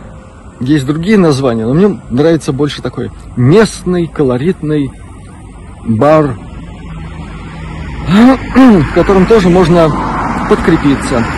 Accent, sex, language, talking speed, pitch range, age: native, male, Russian, 85 wpm, 105-175 Hz, 50-69